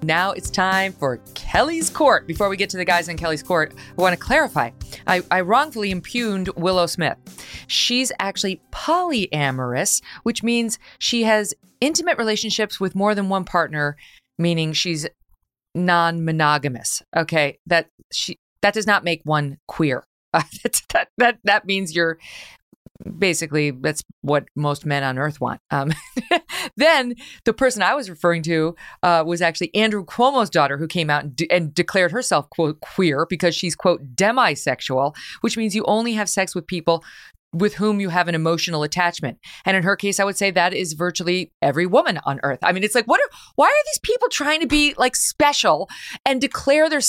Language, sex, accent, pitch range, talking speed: English, female, American, 165-230 Hz, 175 wpm